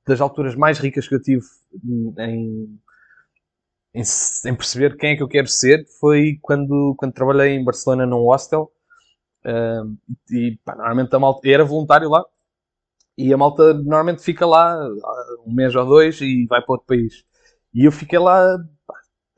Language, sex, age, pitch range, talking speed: Portuguese, male, 20-39, 125-165 Hz, 165 wpm